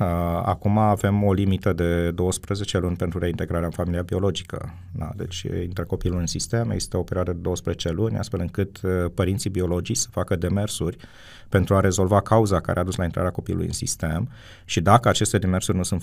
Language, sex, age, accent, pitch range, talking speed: Romanian, male, 30-49, native, 90-100 Hz, 190 wpm